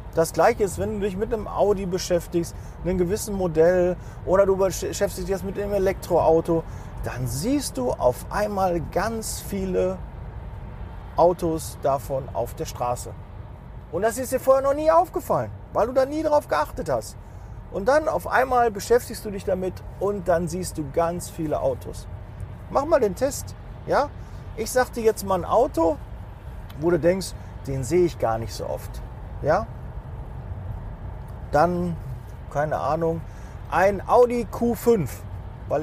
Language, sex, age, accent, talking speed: German, male, 40-59, German, 155 wpm